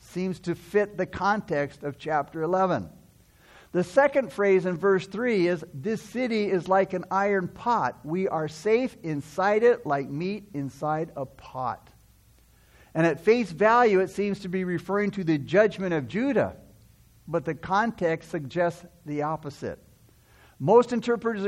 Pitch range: 165-210 Hz